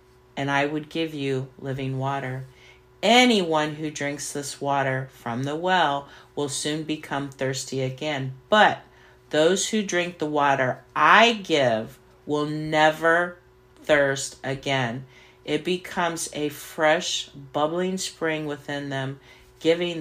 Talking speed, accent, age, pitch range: 125 wpm, American, 50-69, 130-155 Hz